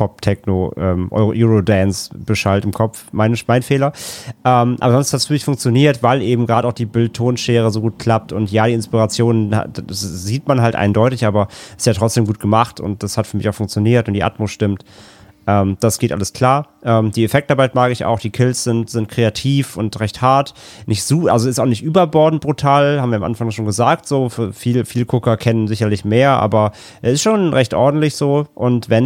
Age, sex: 30-49, male